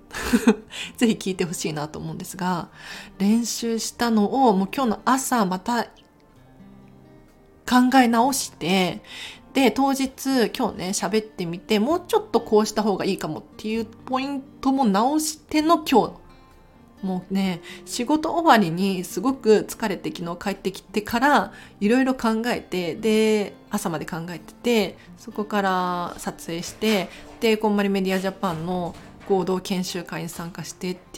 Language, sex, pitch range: Japanese, female, 175-230 Hz